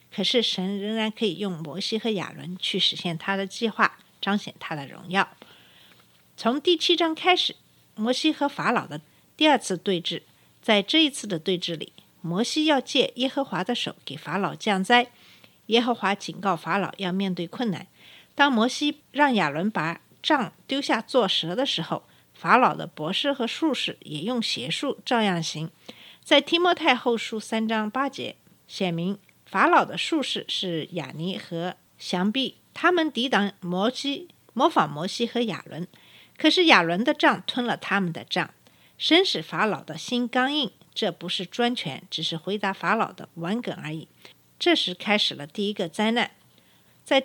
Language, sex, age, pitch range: Chinese, female, 50-69, 180-250 Hz